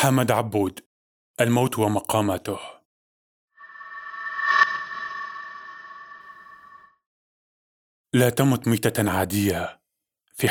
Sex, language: male, Arabic